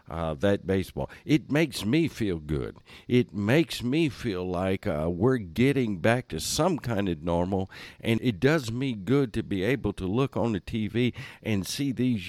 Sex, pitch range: male, 85-115 Hz